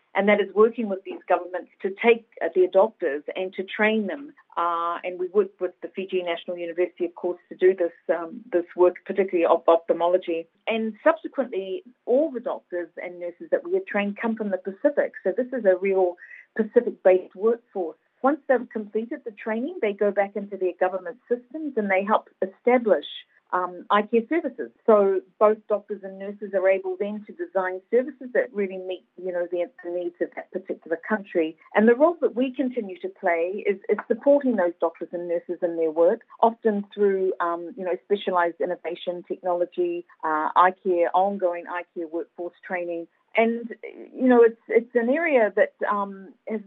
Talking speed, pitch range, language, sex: 185 wpm, 180-225 Hz, English, female